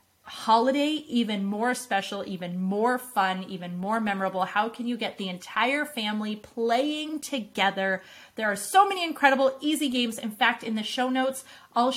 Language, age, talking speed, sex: English, 30-49, 165 wpm, female